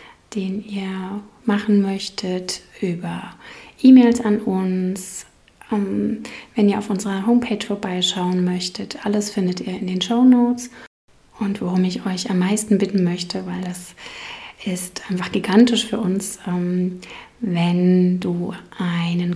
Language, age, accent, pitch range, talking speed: German, 30-49, German, 180-220 Hz, 125 wpm